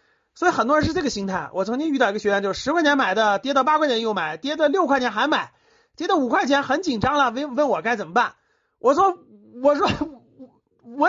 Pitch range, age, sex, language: 210-290 Hz, 30-49, male, Chinese